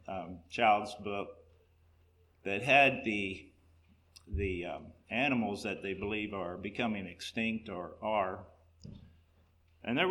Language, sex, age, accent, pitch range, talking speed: English, male, 50-69, American, 85-110 Hz, 115 wpm